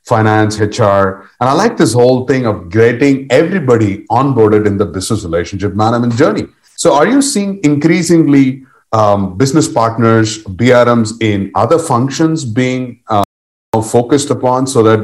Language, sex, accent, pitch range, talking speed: English, male, Indian, 110-145 Hz, 145 wpm